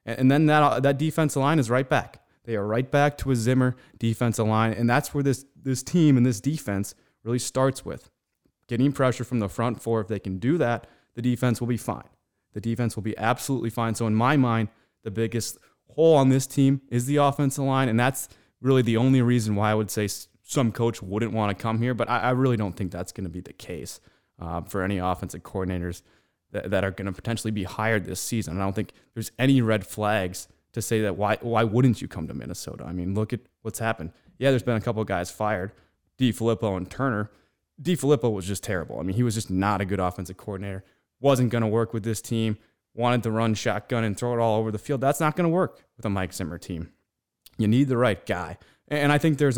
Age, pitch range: 20-39, 100-130 Hz